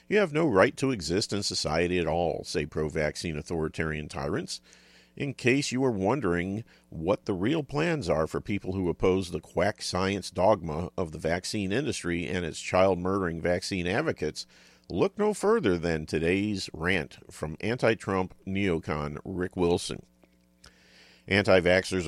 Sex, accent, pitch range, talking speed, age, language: male, American, 80-100 Hz, 145 wpm, 50-69, English